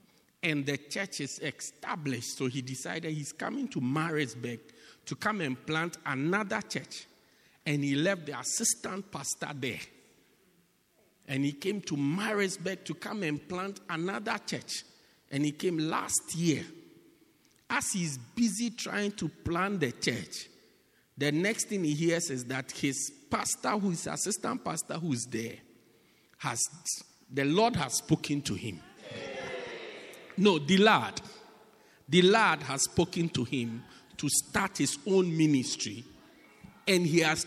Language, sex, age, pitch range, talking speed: English, male, 50-69, 140-195 Hz, 145 wpm